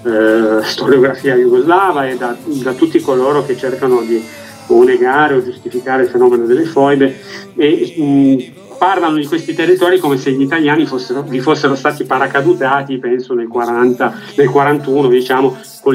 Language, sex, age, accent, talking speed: Italian, male, 40-59, native, 155 wpm